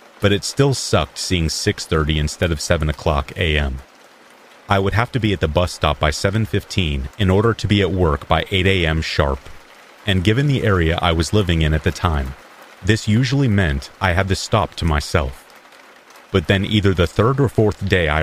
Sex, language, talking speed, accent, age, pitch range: male, English, 200 wpm, American, 30-49, 80-100 Hz